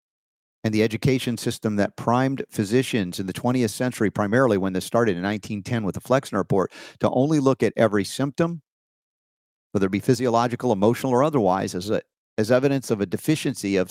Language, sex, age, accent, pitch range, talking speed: English, male, 50-69, American, 95-125 Hz, 175 wpm